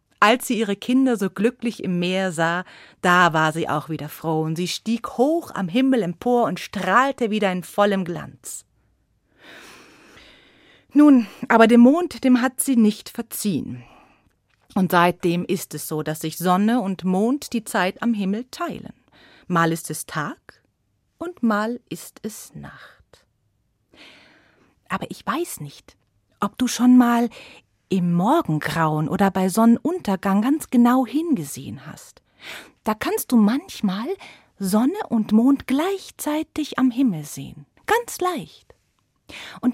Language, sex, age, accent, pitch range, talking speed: German, female, 30-49, German, 175-250 Hz, 140 wpm